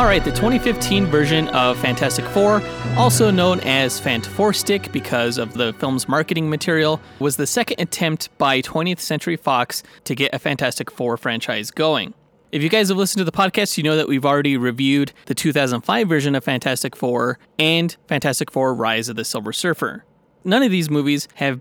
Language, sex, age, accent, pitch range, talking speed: English, male, 20-39, American, 135-185 Hz, 185 wpm